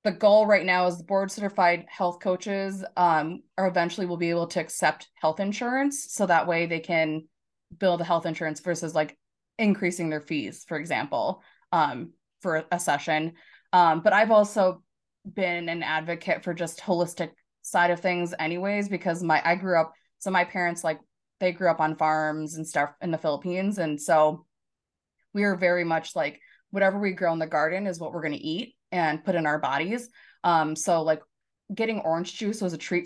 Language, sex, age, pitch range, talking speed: English, female, 20-39, 160-190 Hz, 190 wpm